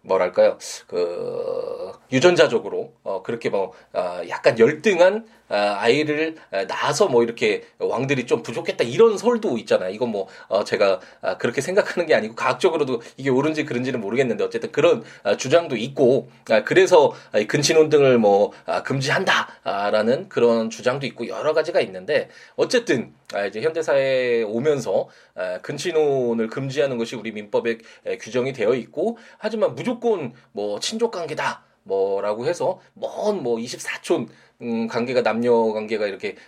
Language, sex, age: Korean, male, 20-39